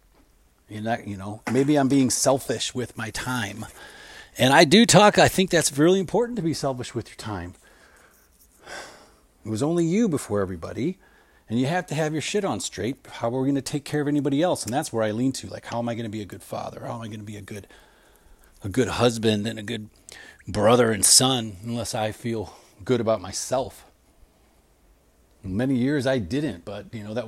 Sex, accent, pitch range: male, American, 100-130 Hz